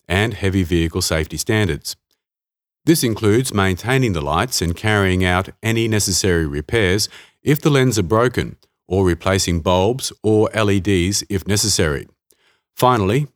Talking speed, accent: 130 wpm, Australian